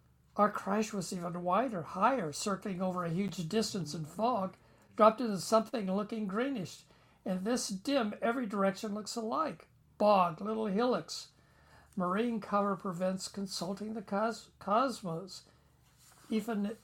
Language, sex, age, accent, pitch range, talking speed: English, male, 60-79, American, 175-215 Hz, 125 wpm